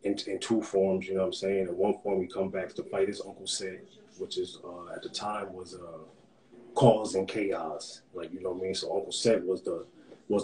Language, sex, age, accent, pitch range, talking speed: English, male, 20-39, American, 100-120 Hz, 245 wpm